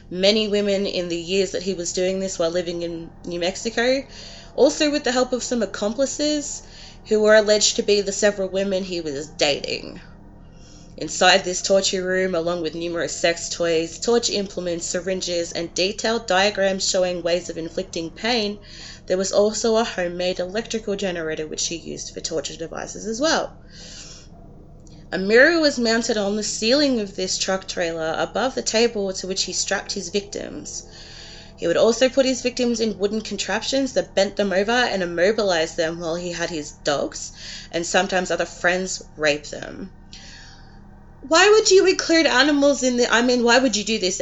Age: 20-39